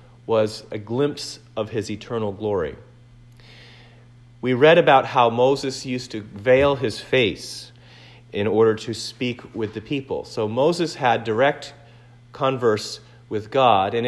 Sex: male